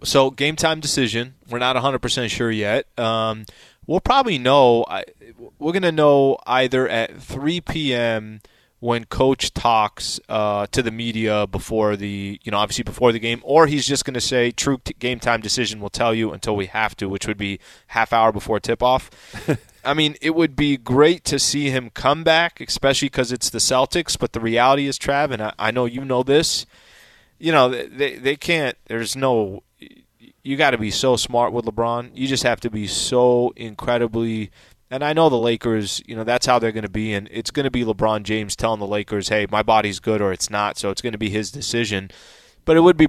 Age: 20-39